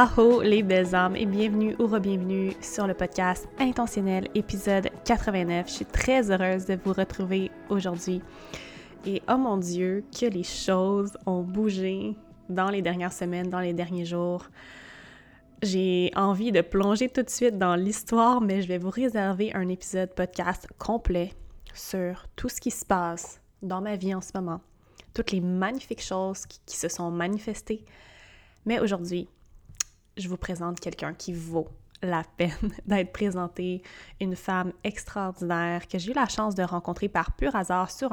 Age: 20-39